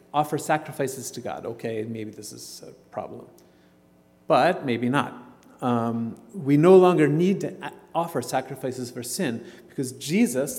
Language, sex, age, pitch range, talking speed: English, male, 40-59, 110-145 Hz, 145 wpm